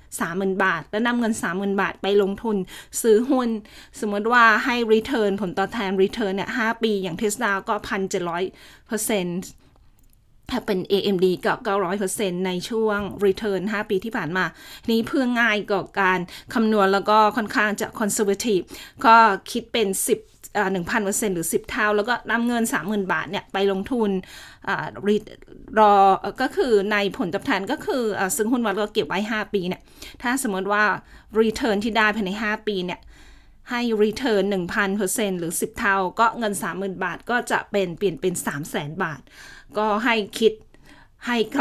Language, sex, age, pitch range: Thai, female, 20-39, 195-225 Hz